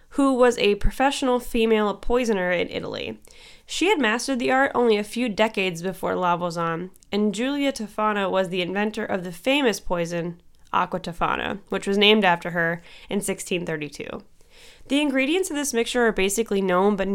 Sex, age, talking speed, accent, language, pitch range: female, 10-29, 170 wpm, American, English, 185-235 Hz